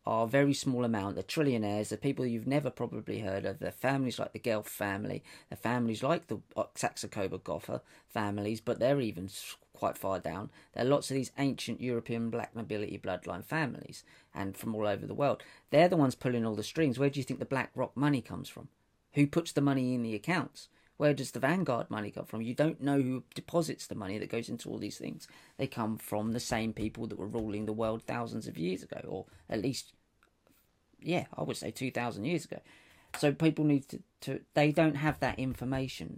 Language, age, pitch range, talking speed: English, 40-59, 110-140 Hz, 215 wpm